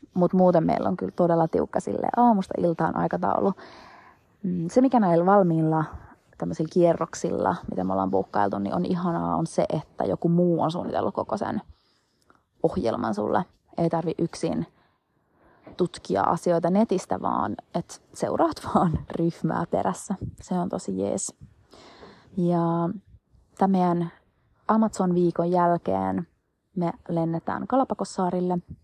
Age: 30-49